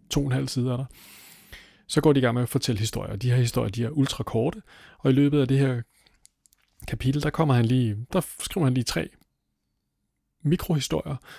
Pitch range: 110-145 Hz